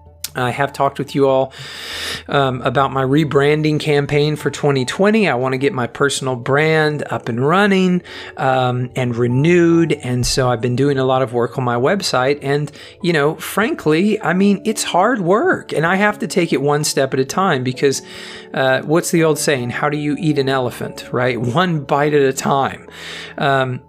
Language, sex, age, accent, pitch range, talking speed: English, male, 40-59, American, 135-170 Hz, 195 wpm